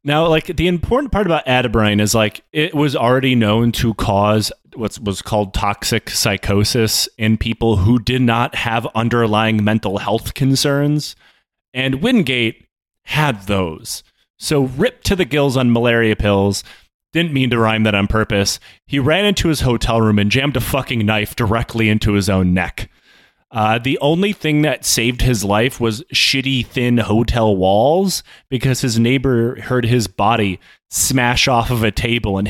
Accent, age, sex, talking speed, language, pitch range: American, 30-49, male, 165 wpm, English, 105-130 Hz